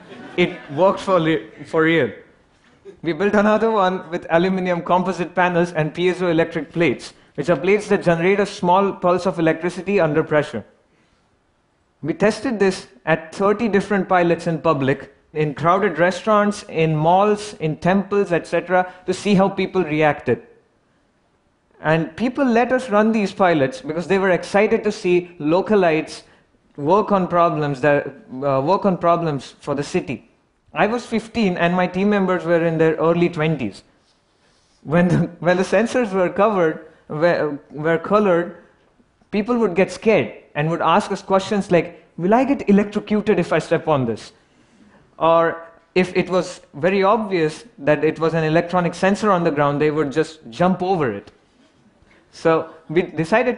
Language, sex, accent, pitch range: Chinese, male, Indian, 160-195 Hz